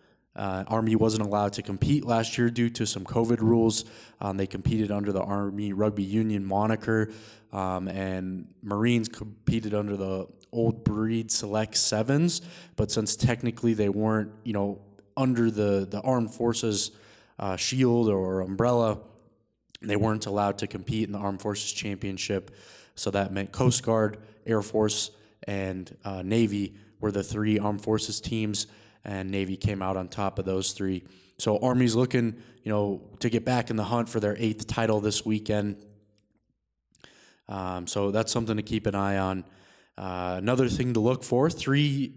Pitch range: 100-115 Hz